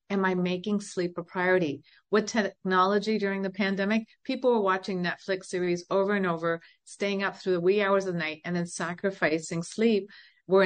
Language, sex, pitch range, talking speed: English, female, 175-200 Hz, 185 wpm